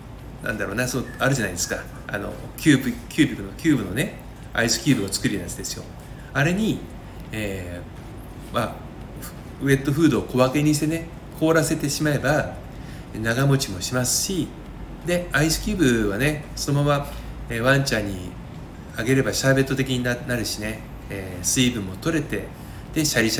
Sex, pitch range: male, 105-145 Hz